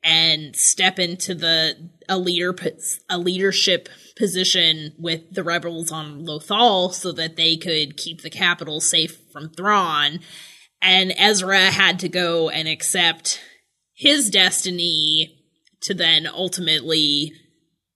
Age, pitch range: 20-39, 155-195 Hz